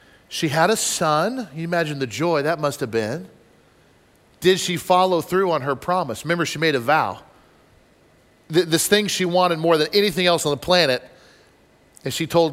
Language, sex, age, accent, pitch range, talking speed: English, male, 40-59, American, 145-175 Hz, 180 wpm